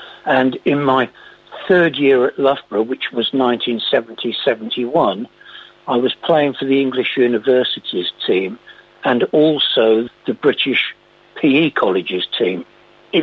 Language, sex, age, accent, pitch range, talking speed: English, male, 60-79, British, 125-160 Hz, 120 wpm